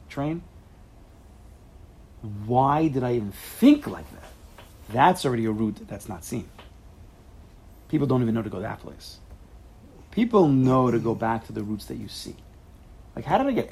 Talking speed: 170 wpm